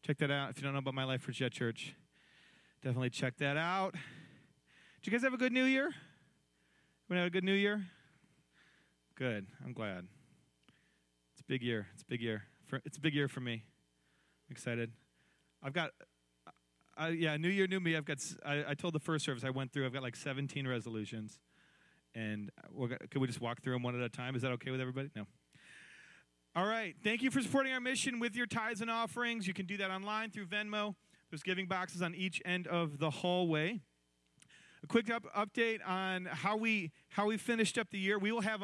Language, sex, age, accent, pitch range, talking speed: English, male, 30-49, American, 125-190 Hz, 215 wpm